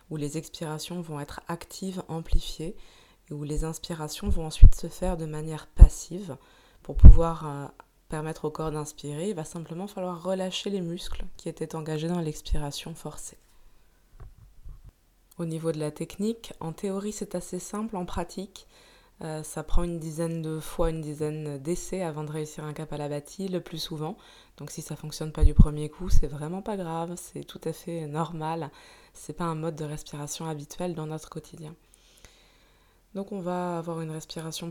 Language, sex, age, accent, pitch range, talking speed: French, female, 20-39, French, 150-180 Hz, 185 wpm